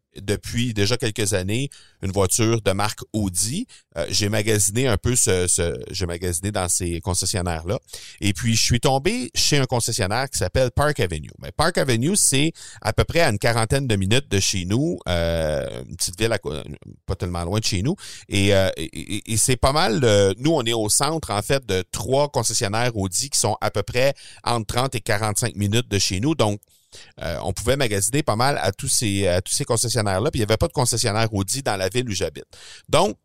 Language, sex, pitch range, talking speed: French, male, 100-125 Hz, 220 wpm